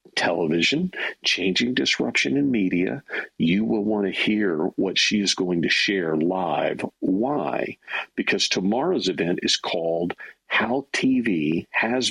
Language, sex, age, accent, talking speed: English, male, 50-69, American, 130 wpm